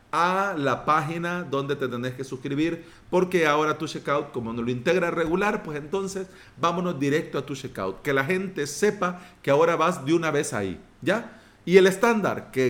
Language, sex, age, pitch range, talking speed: Spanish, male, 40-59, 130-175 Hz, 190 wpm